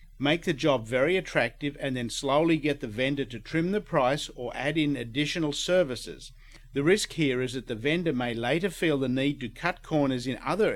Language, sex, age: English, male, 50-69